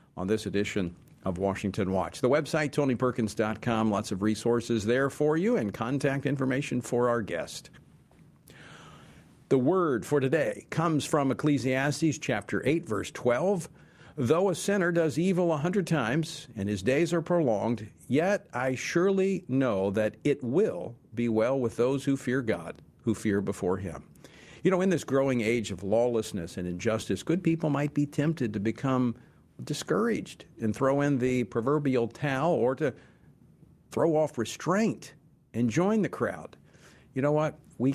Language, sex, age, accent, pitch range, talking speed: English, male, 50-69, American, 110-150 Hz, 160 wpm